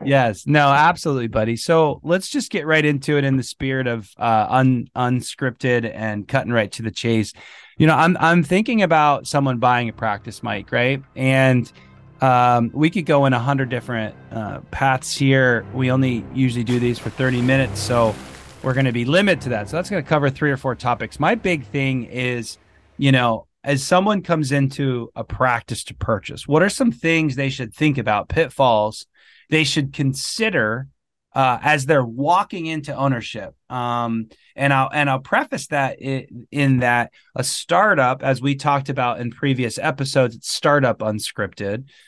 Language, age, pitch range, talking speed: English, 30-49, 120-155 Hz, 180 wpm